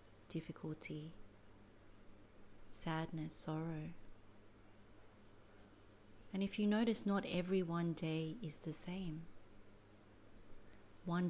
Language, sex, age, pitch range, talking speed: English, female, 30-49, 105-175 Hz, 80 wpm